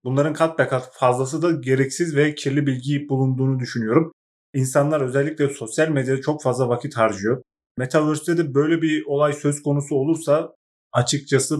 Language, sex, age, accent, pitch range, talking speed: Turkish, male, 30-49, native, 130-150 Hz, 145 wpm